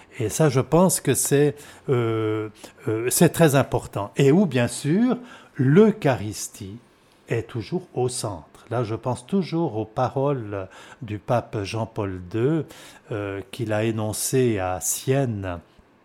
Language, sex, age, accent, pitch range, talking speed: French, male, 60-79, French, 100-135 Hz, 130 wpm